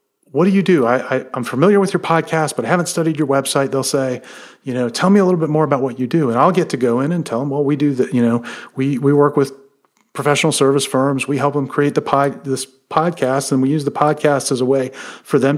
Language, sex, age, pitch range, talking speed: English, male, 40-59, 125-145 Hz, 275 wpm